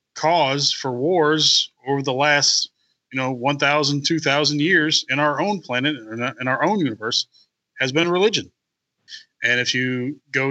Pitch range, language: 125-155 Hz, English